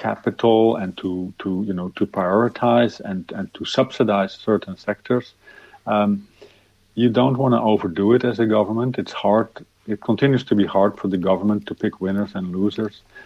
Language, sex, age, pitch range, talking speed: English, male, 50-69, 95-110 Hz, 175 wpm